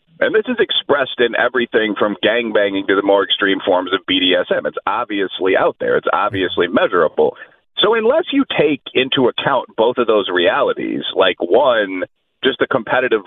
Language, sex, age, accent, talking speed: English, male, 40-59, American, 165 wpm